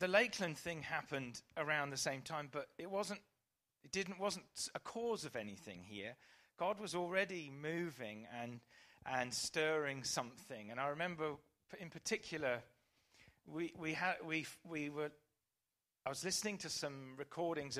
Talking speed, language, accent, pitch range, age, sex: 150 wpm, English, British, 135-165 Hz, 40-59, male